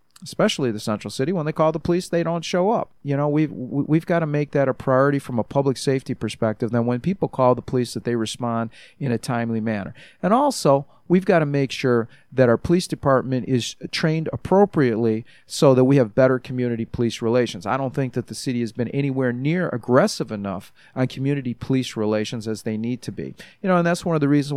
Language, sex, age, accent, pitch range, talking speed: English, male, 40-59, American, 120-155 Hz, 225 wpm